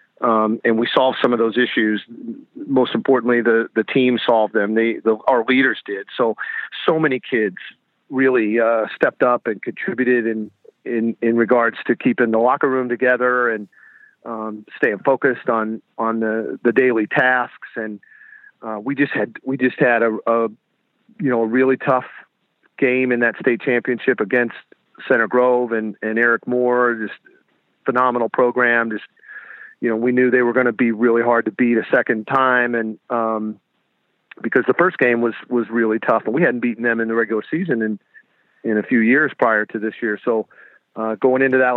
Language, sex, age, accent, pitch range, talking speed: English, male, 40-59, American, 115-125 Hz, 185 wpm